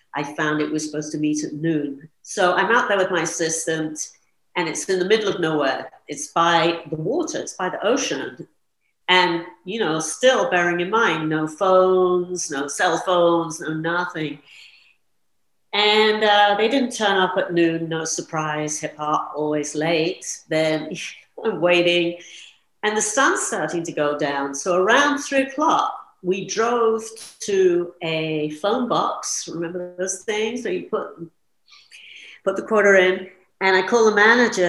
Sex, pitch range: female, 165-230 Hz